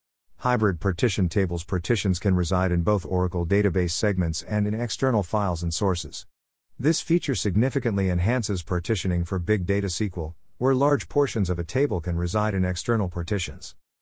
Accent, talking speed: American, 160 wpm